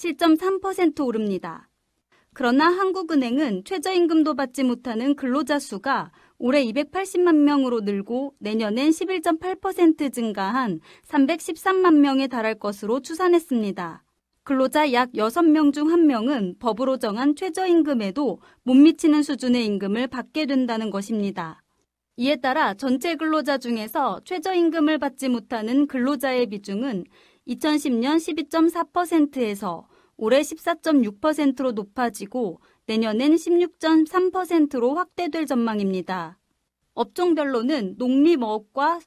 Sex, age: female, 30-49